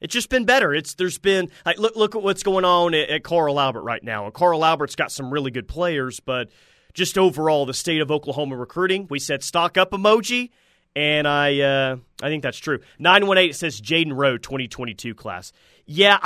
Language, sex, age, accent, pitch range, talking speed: English, male, 30-49, American, 135-180 Hz, 220 wpm